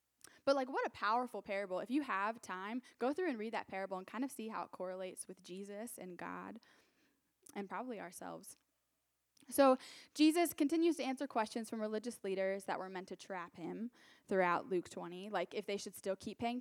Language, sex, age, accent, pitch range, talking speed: English, female, 10-29, American, 185-245 Hz, 200 wpm